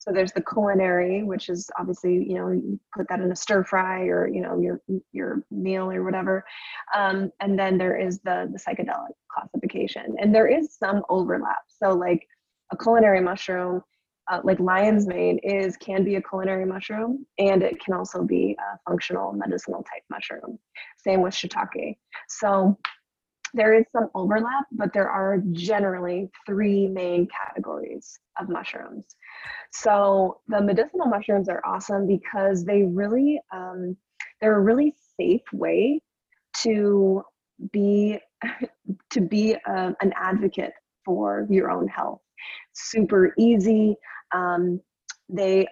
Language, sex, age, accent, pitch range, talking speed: English, female, 20-39, American, 185-210 Hz, 140 wpm